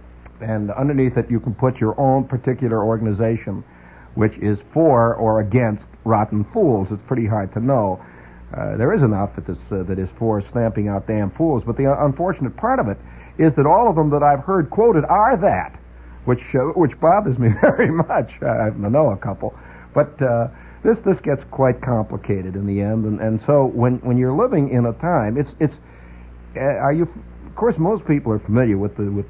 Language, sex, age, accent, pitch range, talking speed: English, male, 60-79, American, 100-135 Hz, 205 wpm